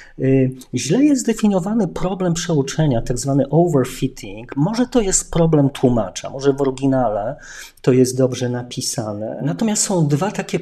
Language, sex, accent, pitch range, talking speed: Polish, male, native, 125-155 Hz, 130 wpm